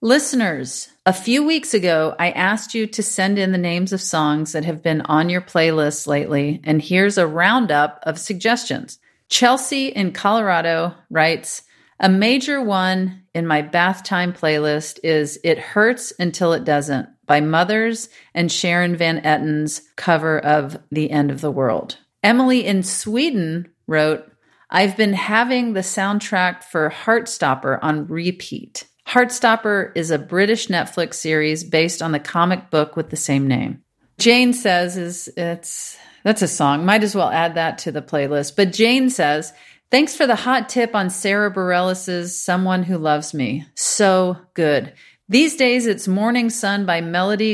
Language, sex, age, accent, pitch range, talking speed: English, female, 40-59, American, 155-205 Hz, 160 wpm